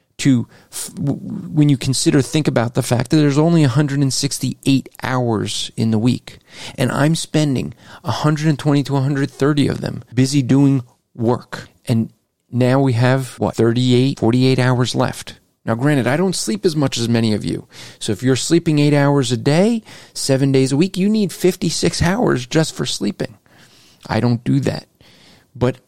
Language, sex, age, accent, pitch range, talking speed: English, male, 40-59, American, 120-145 Hz, 165 wpm